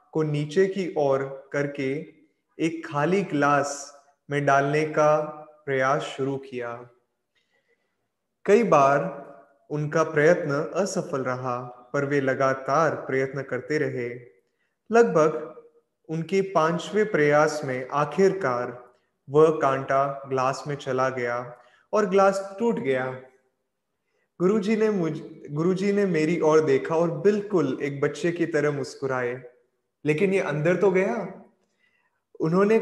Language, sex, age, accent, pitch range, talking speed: Hindi, male, 20-39, native, 135-175 Hz, 100 wpm